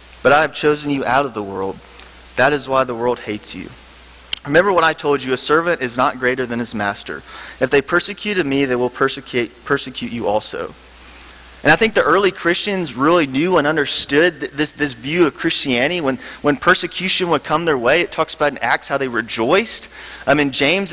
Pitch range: 120-175 Hz